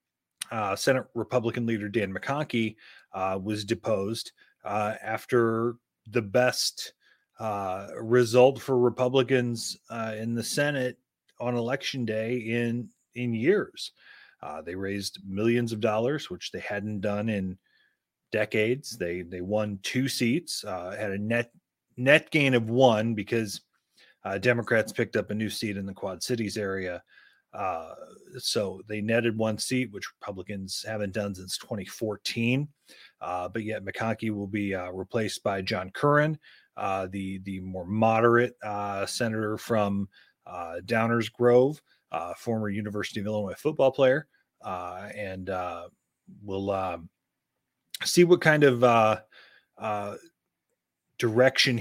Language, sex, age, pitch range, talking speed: English, male, 30-49, 100-120 Hz, 135 wpm